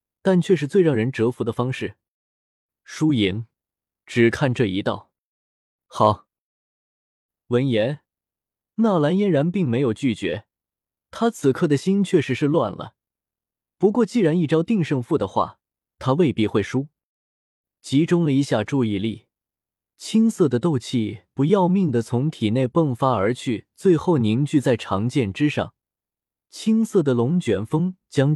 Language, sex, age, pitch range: Chinese, male, 20-39, 115-175 Hz